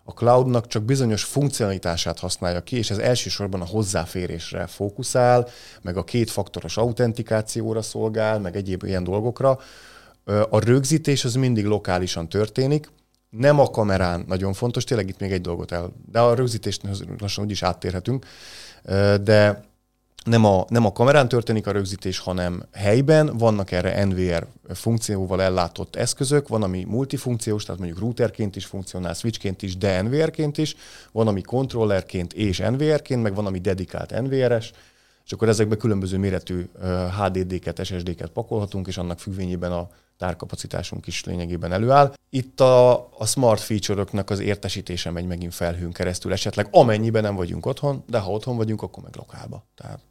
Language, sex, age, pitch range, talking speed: Hungarian, male, 30-49, 95-120 Hz, 150 wpm